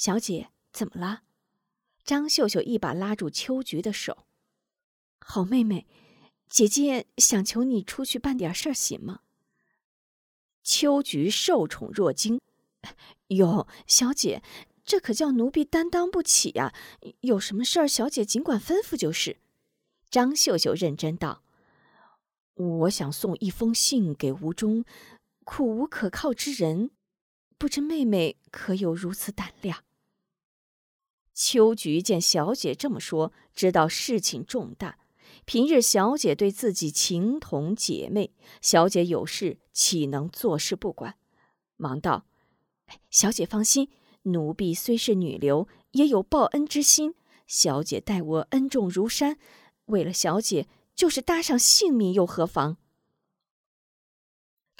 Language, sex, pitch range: Chinese, female, 180-270 Hz